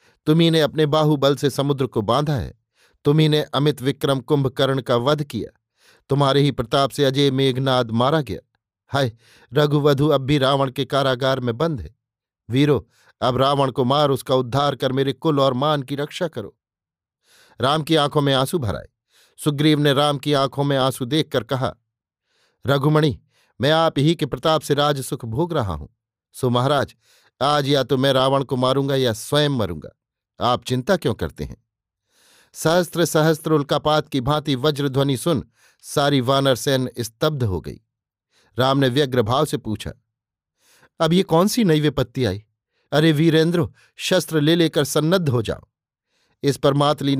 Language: Hindi